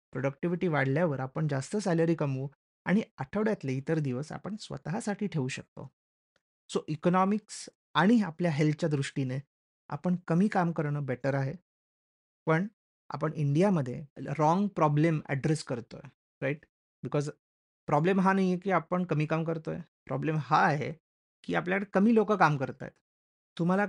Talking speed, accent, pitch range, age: 115 wpm, native, 140-180 Hz, 30-49